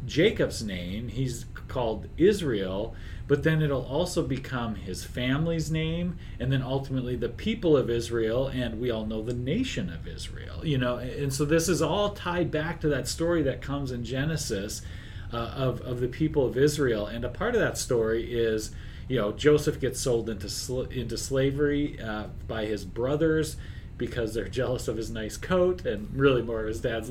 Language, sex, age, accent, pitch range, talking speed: English, male, 40-59, American, 110-140 Hz, 185 wpm